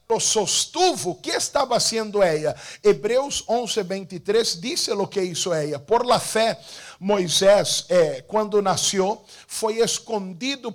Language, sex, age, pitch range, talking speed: English, male, 50-69, 195-270 Hz, 125 wpm